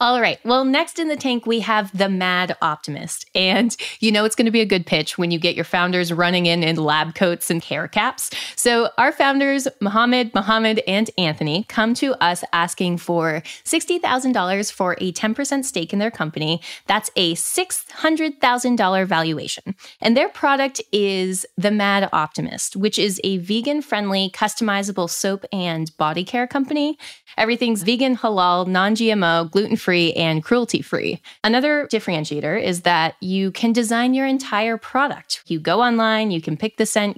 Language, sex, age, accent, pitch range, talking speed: English, female, 20-39, American, 175-240 Hz, 165 wpm